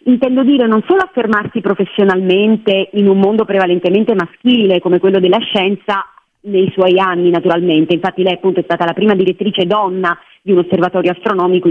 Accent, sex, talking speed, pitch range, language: native, female, 165 wpm, 185-235 Hz, Italian